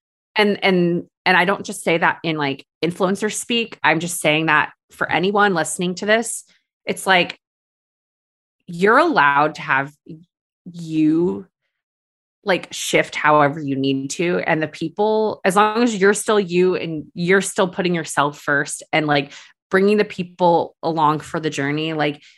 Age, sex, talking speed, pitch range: 20-39, female, 160 wpm, 155-195 Hz